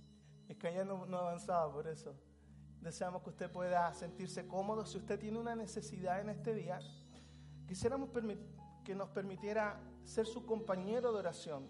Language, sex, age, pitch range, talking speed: Spanish, male, 40-59, 180-225 Hz, 160 wpm